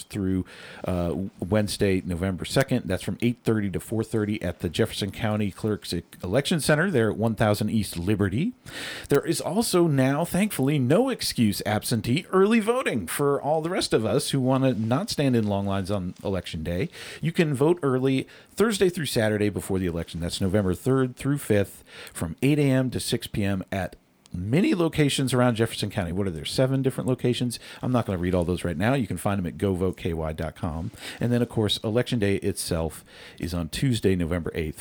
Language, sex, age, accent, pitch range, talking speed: English, male, 40-59, American, 95-135 Hz, 185 wpm